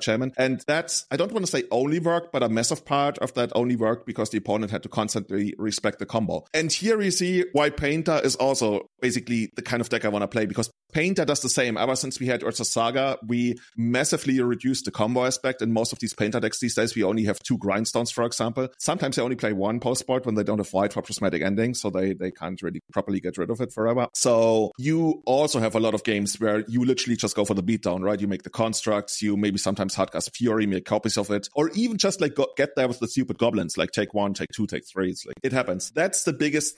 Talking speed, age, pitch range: 255 wpm, 30-49, 105-135 Hz